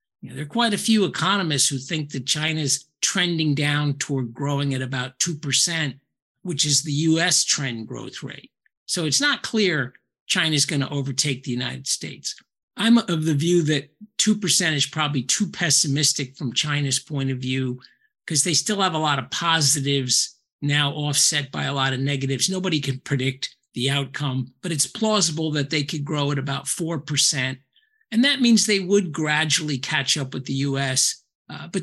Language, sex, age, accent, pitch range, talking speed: English, male, 50-69, American, 135-180 Hz, 175 wpm